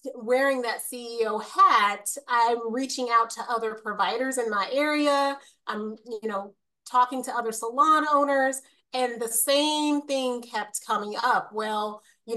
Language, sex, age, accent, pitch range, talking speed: English, female, 30-49, American, 215-260 Hz, 145 wpm